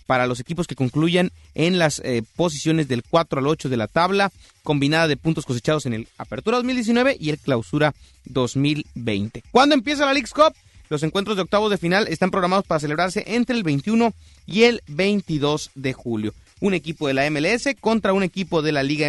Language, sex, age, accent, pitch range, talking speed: Spanish, male, 30-49, Mexican, 140-180 Hz, 195 wpm